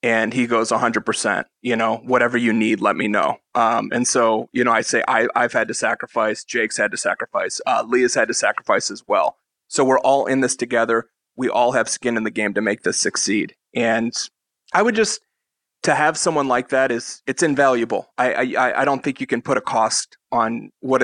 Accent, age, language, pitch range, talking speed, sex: American, 30-49, English, 120-135 Hz, 215 wpm, male